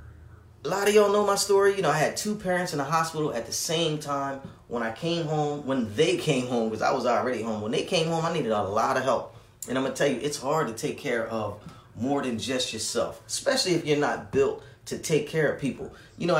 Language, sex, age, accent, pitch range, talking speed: English, male, 30-49, American, 130-175 Hz, 260 wpm